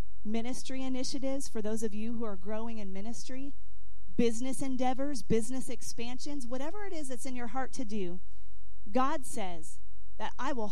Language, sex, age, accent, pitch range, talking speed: English, female, 40-59, American, 195-260 Hz, 160 wpm